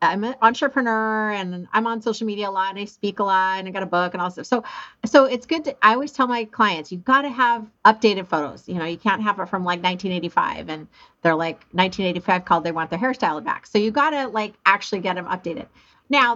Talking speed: 245 wpm